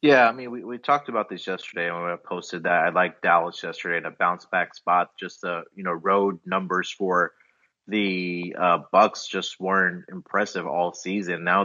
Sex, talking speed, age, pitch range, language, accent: male, 195 wpm, 30-49, 90-100 Hz, English, American